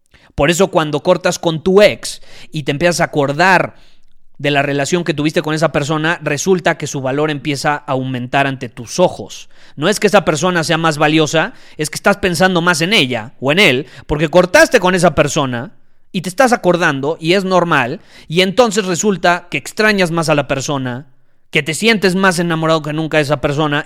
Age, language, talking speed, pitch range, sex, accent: 30-49, Spanish, 200 wpm, 140-175 Hz, male, Mexican